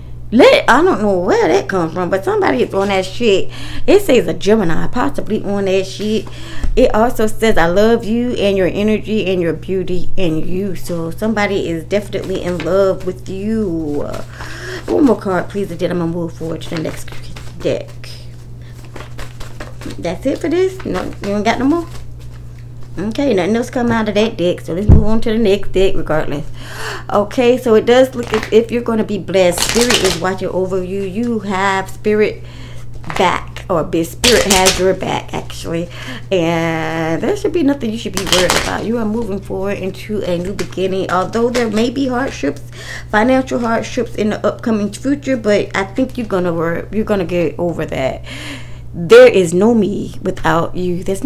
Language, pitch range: English, 165-220 Hz